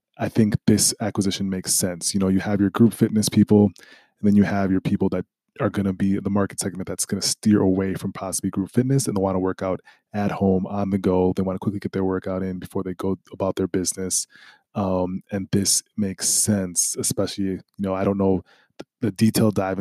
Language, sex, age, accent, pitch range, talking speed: English, male, 20-39, American, 95-105 Hz, 225 wpm